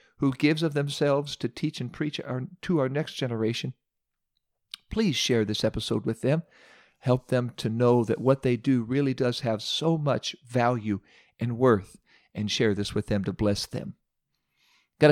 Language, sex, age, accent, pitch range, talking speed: English, male, 50-69, American, 115-160 Hz, 170 wpm